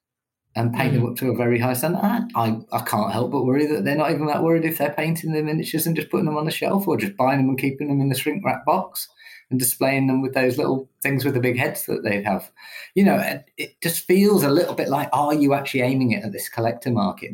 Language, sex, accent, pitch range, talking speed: English, male, British, 115-165 Hz, 275 wpm